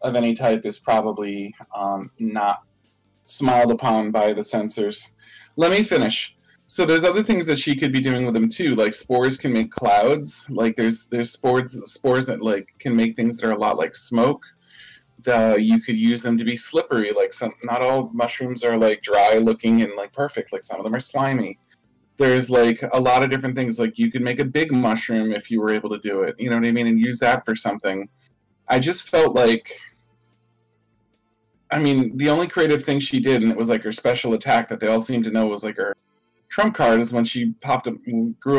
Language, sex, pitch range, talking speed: English, male, 110-130 Hz, 220 wpm